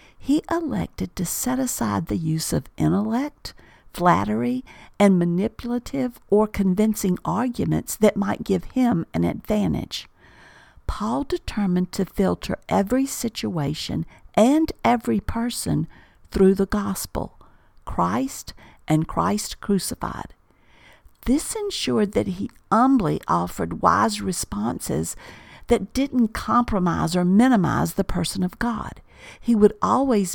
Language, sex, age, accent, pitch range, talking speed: English, female, 50-69, American, 180-240 Hz, 115 wpm